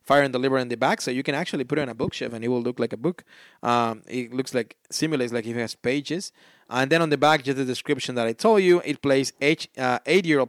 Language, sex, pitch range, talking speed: English, male, 130-185 Hz, 280 wpm